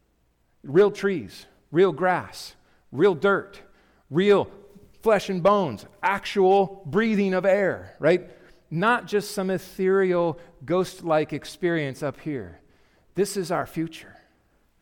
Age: 40-59